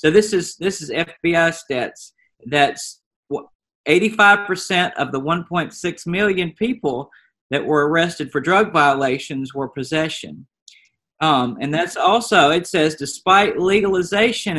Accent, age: American, 40-59